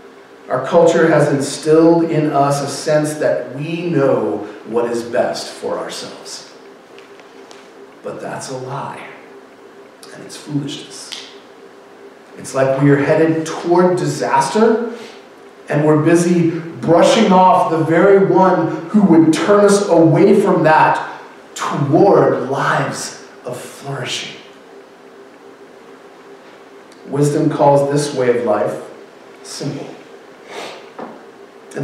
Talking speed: 105 wpm